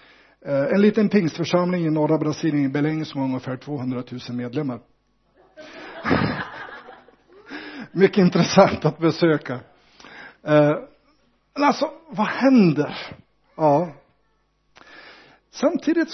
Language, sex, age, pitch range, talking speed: Swedish, male, 60-79, 150-235 Hz, 90 wpm